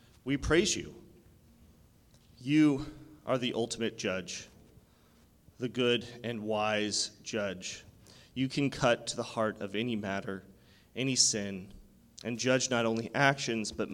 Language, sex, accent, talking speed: English, male, American, 130 wpm